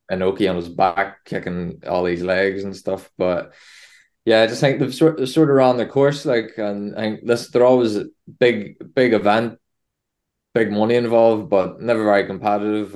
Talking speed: 190 wpm